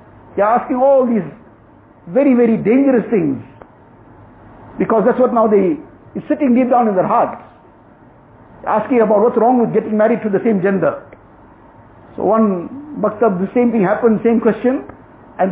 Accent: Indian